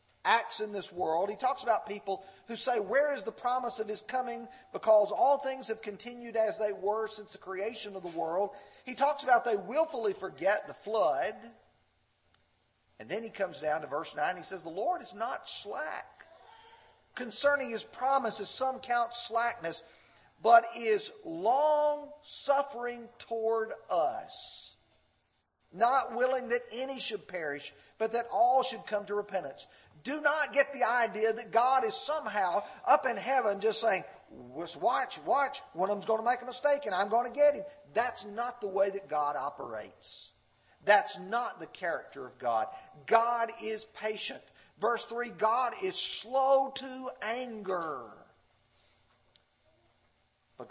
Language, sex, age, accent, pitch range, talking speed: English, male, 40-59, American, 200-260 Hz, 155 wpm